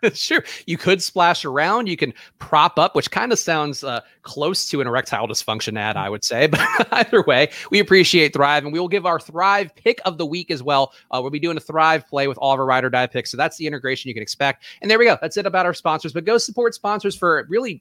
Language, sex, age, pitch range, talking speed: English, male, 30-49, 130-185 Hz, 265 wpm